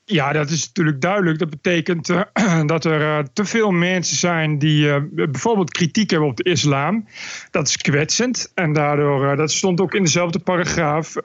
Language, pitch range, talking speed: Dutch, 150-190 Hz, 185 wpm